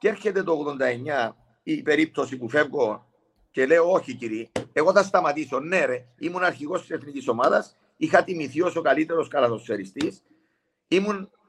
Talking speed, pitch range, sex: 150 wpm, 135-210 Hz, male